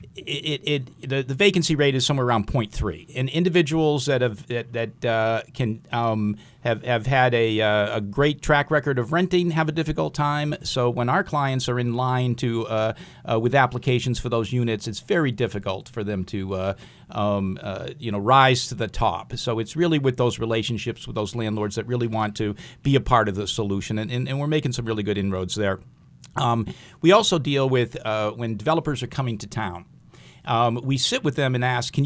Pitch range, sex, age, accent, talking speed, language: 105-135 Hz, male, 50-69, American, 210 wpm, English